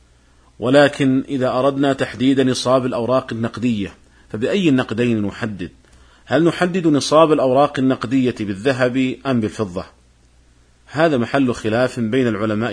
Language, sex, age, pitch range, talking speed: Arabic, male, 40-59, 110-135 Hz, 110 wpm